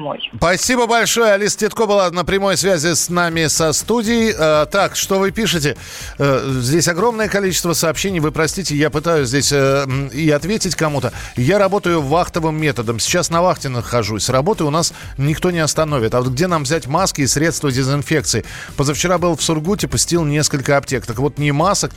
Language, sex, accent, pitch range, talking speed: Russian, male, native, 130-170 Hz, 170 wpm